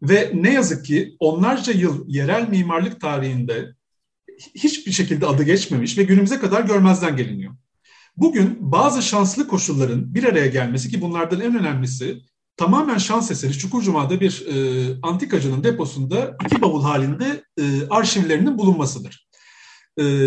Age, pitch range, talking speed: 40-59, 140-210 Hz, 130 wpm